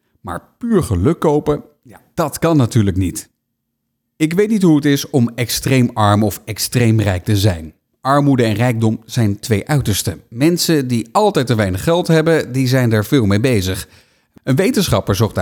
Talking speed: 170 wpm